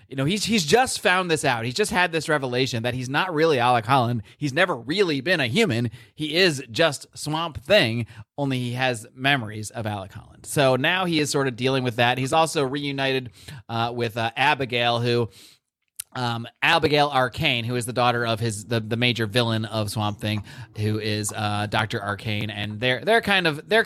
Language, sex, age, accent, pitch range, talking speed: English, male, 30-49, American, 115-155 Hz, 205 wpm